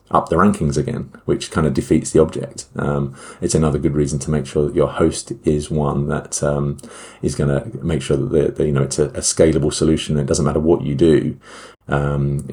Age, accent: 30-49, British